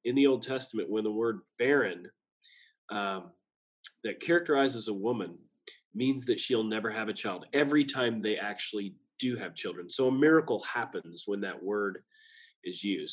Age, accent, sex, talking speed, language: 30-49, American, male, 165 wpm, English